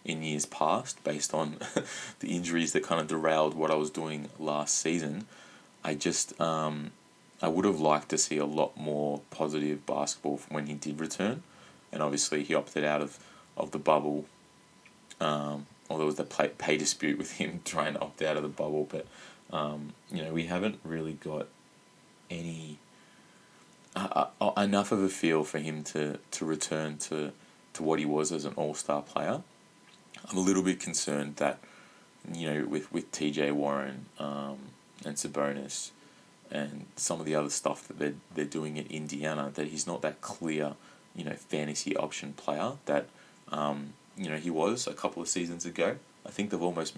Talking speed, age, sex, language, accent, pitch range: 180 wpm, 20-39, male, English, Australian, 75-80 Hz